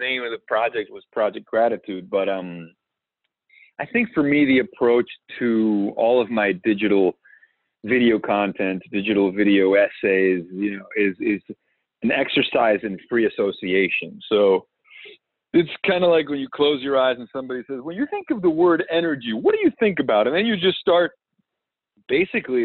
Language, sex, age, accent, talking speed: English, male, 30-49, American, 170 wpm